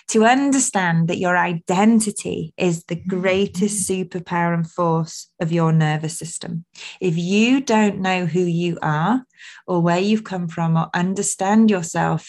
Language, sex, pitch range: English, female, 170-195 Hz